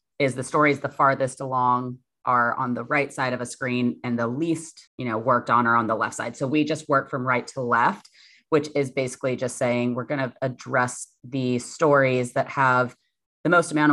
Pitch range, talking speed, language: 125-145 Hz, 215 wpm, English